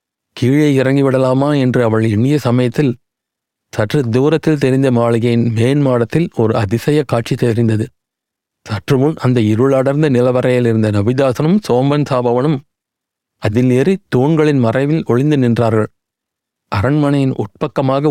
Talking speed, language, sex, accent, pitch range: 105 wpm, Tamil, male, native, 115-145 Hz